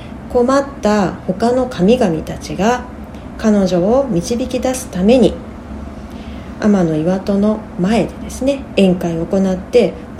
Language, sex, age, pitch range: Japanese, female, 40-59, 185-245 Hz